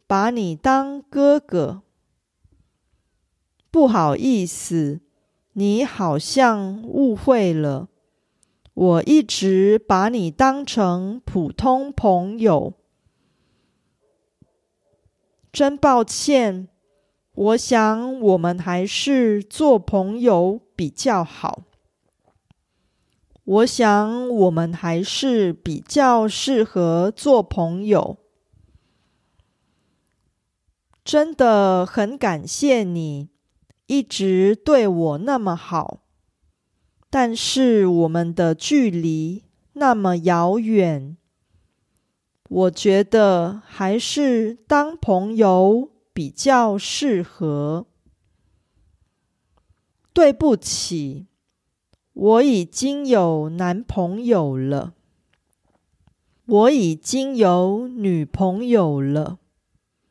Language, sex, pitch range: Korean, female, 165-240 Hz